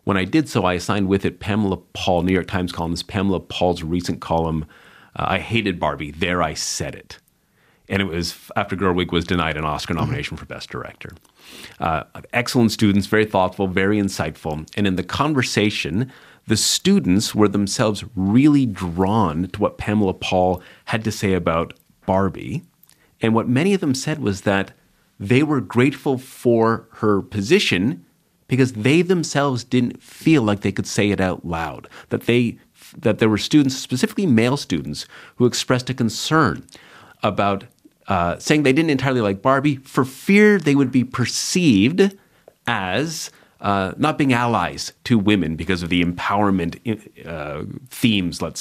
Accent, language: American, English